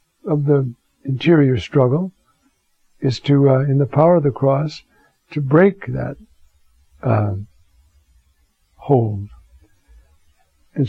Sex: male